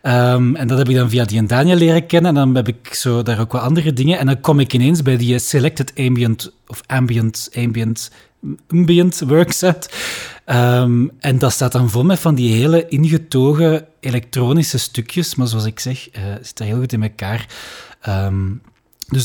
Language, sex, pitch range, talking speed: Dutch, male, 120-150 Hz, 185 wpm